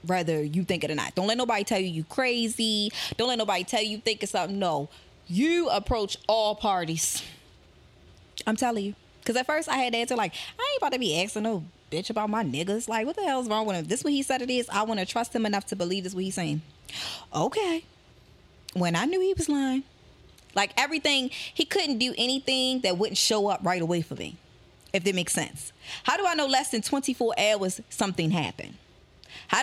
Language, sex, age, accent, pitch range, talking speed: English, female, 20-39, American, 180-245 Hz, 230 wpm